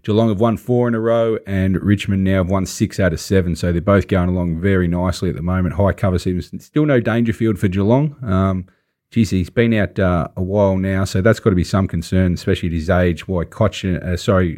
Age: 30-49